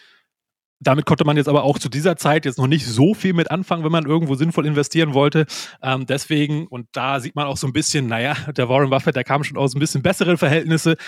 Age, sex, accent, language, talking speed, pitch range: 30-49, male, German, German, 240 wpm, 130-165 Hz